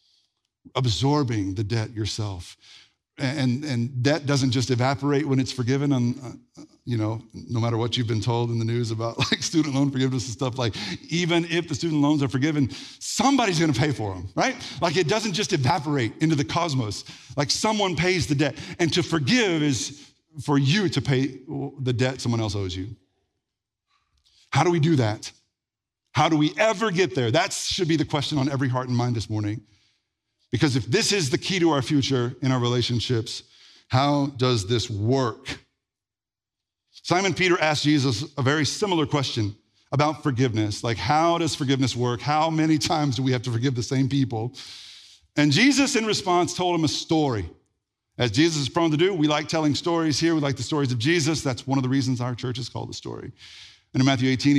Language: English